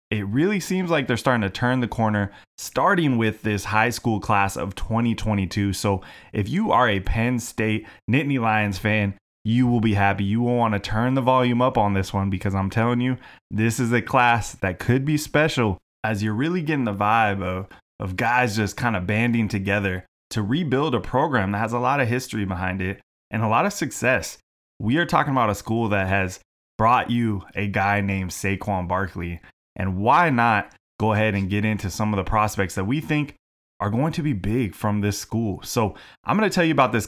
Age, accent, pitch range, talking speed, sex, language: 20-39, American, 100-120 Hz, 215 wpm, male, English